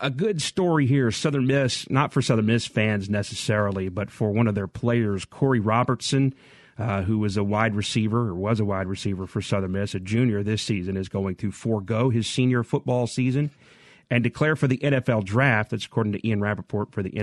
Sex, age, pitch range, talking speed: male, 40-59, 100-125 Hz, 205 wpm